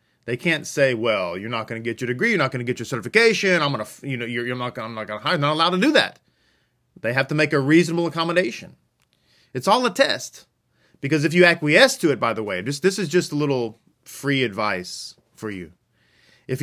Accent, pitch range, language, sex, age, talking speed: American, 130-180 Hz, English, male, 30-49, 240 wpm